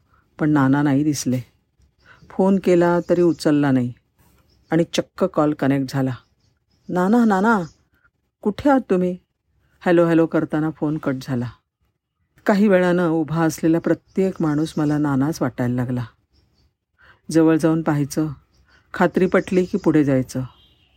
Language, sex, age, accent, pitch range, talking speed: Marathi, female, 50-69, native, 135-175 Hz, 125 wpm